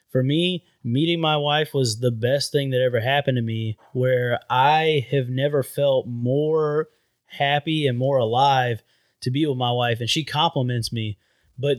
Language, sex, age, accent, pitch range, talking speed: English, male, 30-49, American, 120-145 Hz, 175 wpm